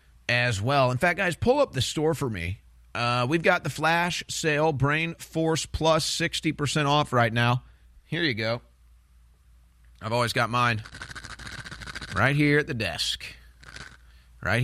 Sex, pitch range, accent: male, 90-135 Hz, American